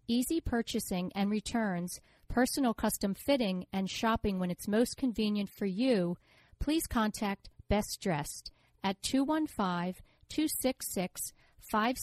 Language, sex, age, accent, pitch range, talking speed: English, female, 50-69, American, 190-240 Hz, 135 wpm